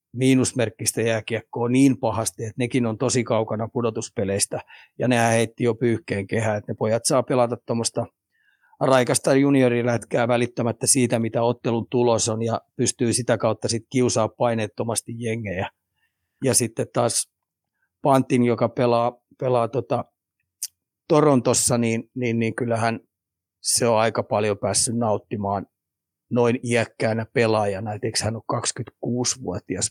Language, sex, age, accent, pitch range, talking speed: Finnish, male, 30-49, native, 110-125 Hz, 125 wpm